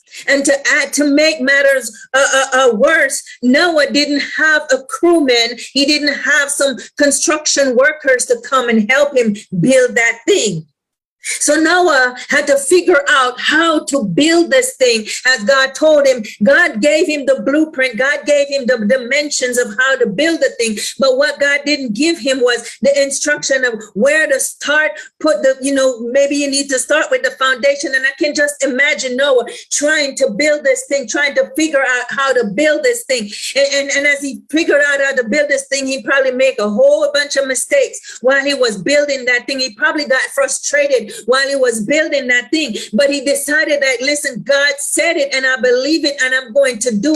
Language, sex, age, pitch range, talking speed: English, female, 40-59, 255-295 Hz, 200 wpm